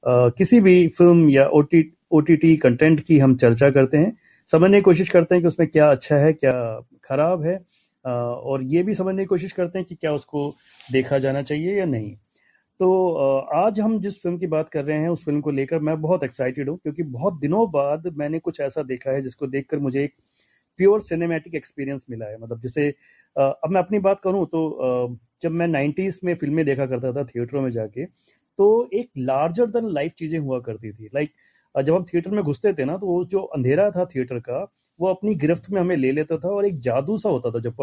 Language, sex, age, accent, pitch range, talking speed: Hindi, male, 30-49, native, 135-180 Hz, 160 wpm